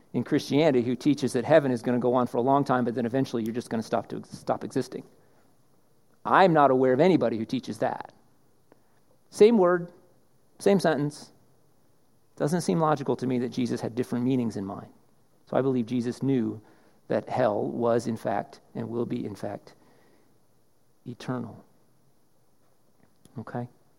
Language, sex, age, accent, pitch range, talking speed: English, male, 40-59, American, 130-190 Hz, 170 wpm